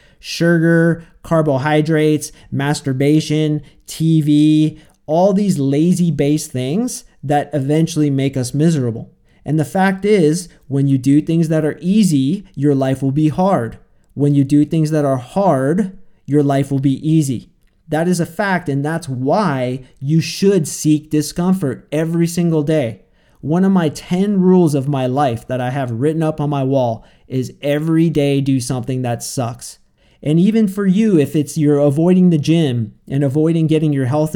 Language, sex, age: English, male, 30-49